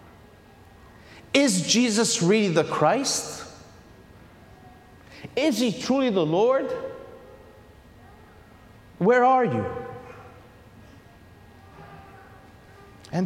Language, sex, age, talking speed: English, male, 50-69, 65 wpm